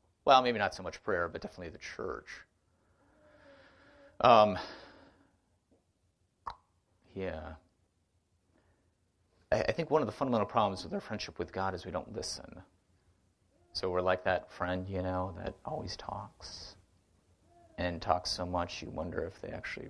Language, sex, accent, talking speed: English, male, American, 145 wpm